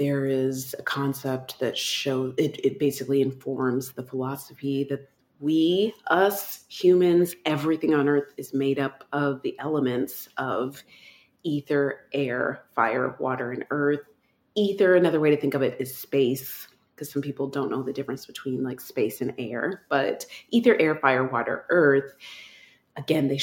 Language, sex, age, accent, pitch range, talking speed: English, female, 30-49, American, 130-155 Hz, 155 wpm